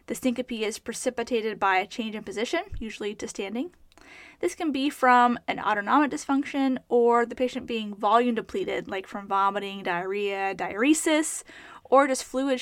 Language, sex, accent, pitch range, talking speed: English, female, American, 225-300 Hz, 155 wpm